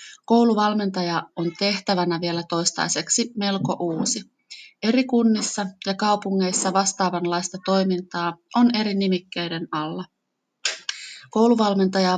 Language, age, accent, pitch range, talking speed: Finnish, 30-49, native, 180-220 Hz, 90 wpm